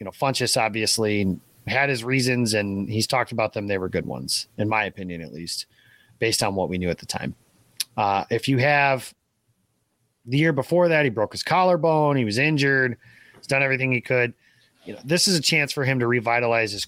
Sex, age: male, 30-49